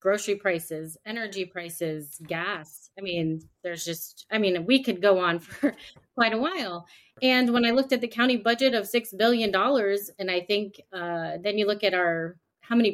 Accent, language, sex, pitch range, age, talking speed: American, English, female, 185-250 Hz, 30-49, 195 wpm